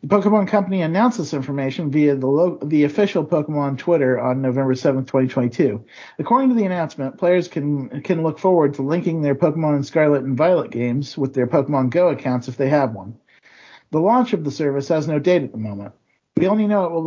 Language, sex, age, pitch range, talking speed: English, male, 50-69, 135-185 Hz, 210 wpm